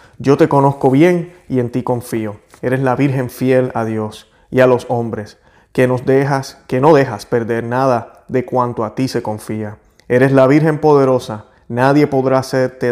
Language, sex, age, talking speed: Spanish, male, 30-49, 180 wpm